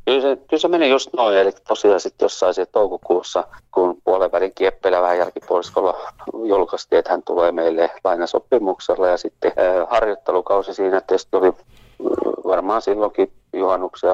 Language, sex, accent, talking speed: Finnish, male, native, 140 wpm